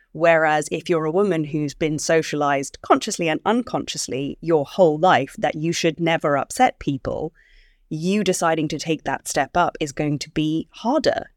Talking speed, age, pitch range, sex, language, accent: 170 wpm, 20-39, 150-175 Hz, female, English, British